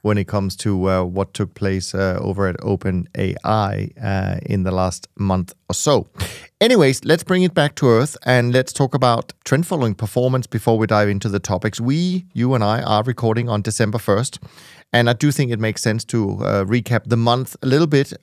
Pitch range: 110-135 Hz